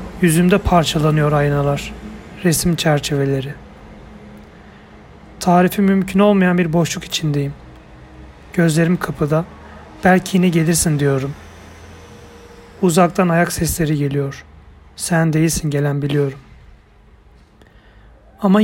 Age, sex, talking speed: 40-59, male, 85 wpm